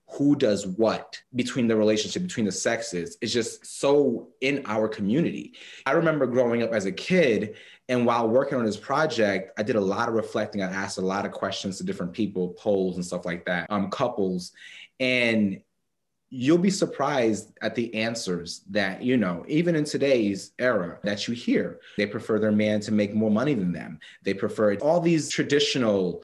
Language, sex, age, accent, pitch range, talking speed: English, male, 30-49, American, 105-135 Hz, 190 wpm